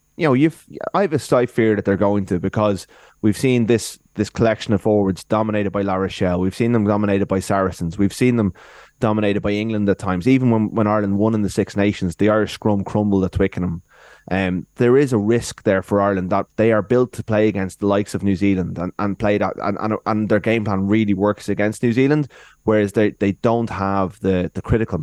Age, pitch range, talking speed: 20-39, 95-115 Hz, 230 wpm